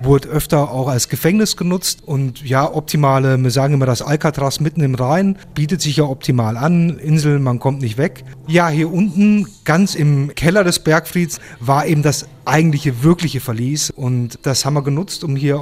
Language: German